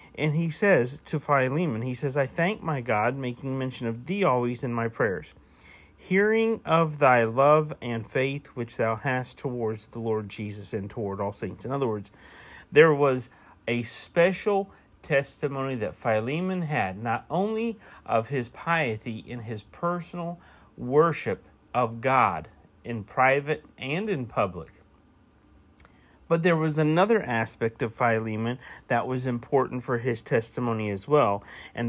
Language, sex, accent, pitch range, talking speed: English, male, American, 110-150 Hz, 150 wpm